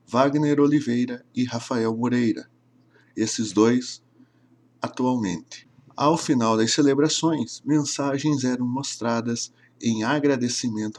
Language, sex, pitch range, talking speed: Portuguese, male, 115-140 Hz, 95 wpm